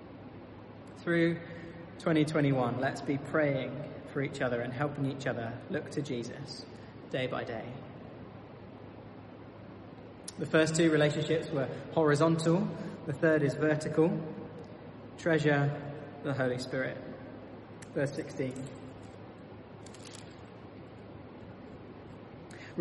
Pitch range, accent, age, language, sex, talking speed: 130-165 Hz, British, 20-39, English, male, 90 wpm